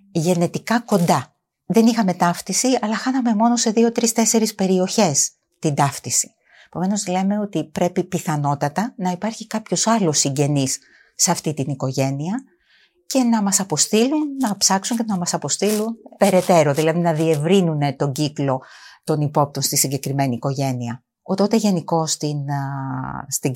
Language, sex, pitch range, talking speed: Greek, female, 145-215 Hz, 140 wpm